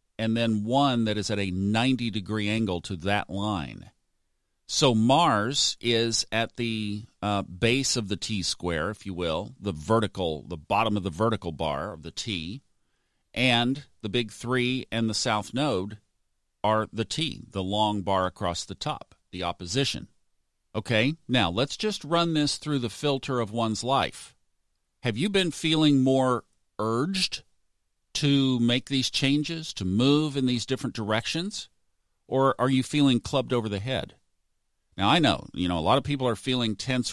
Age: 50-69